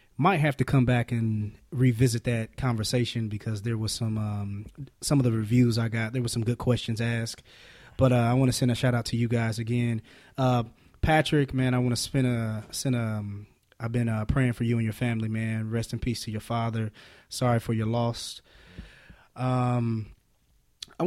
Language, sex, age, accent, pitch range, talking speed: English, male, 20-39, American, 115-130 Hz, 200 wpm